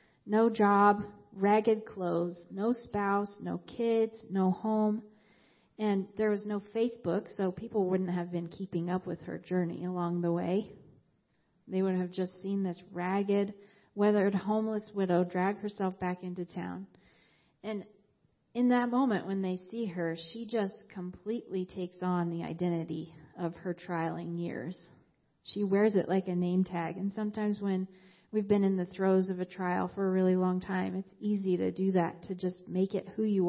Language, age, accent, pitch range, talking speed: English, 40-59, American, 180-205 Hz, 170 wpm